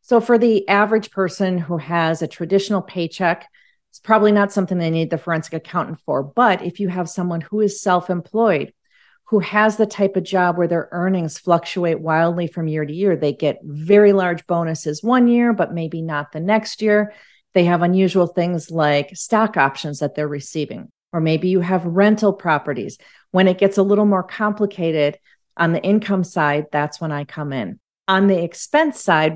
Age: 40-59